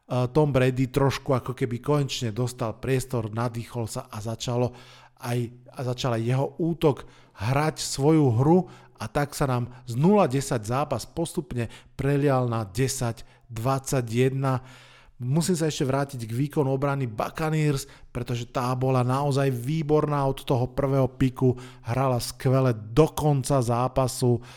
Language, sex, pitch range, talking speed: Slovak, male, 125-145 Hz, 130 wpm